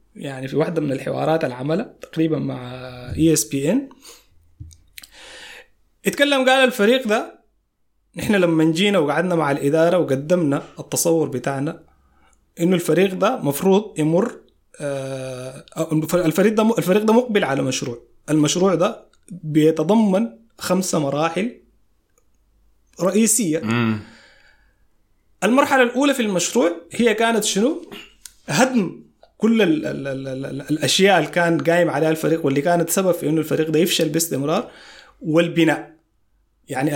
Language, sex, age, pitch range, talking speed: Arabic, male, 20-39, 140-190 Hz, 105 wpm